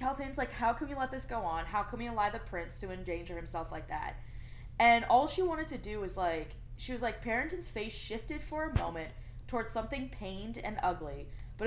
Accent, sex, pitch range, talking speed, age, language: American, female, 155-235 Hz, 220 wpm, 20-39, English